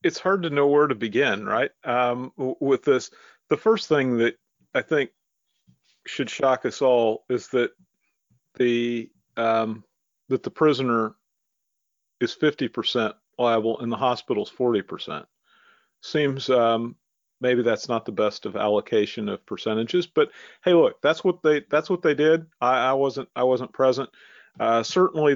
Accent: American